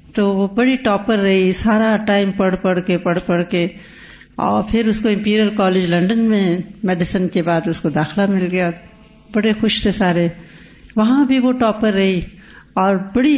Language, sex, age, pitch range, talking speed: Urdu, female, 60-79, 185-235 Hz, 180 wpm